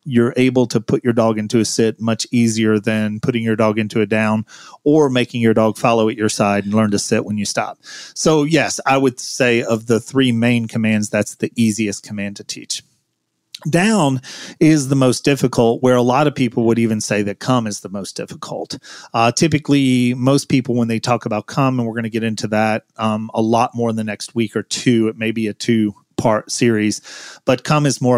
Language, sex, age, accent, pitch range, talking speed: English, male, 30-49, American, 110-125 Hz, 225 wpm